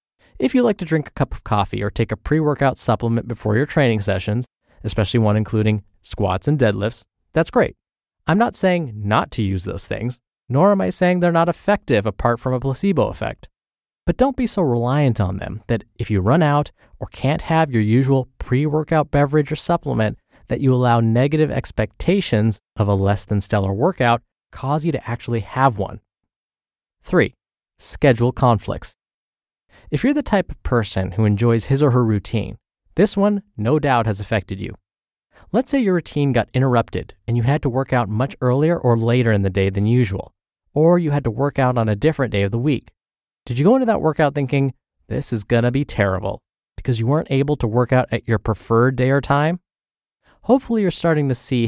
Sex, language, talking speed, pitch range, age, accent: male, English, 195 wpm, 110-150 Hz, 20-39, American